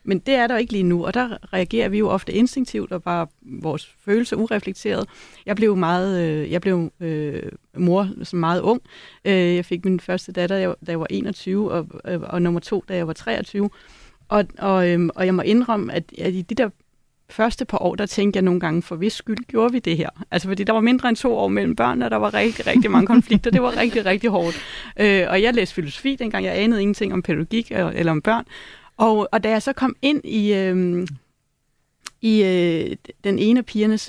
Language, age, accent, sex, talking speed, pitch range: Danish, 30-49, native, female, 220 wpm, 180-225 Hz